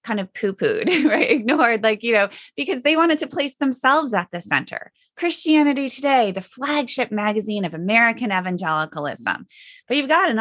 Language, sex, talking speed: English, female, 175 wpm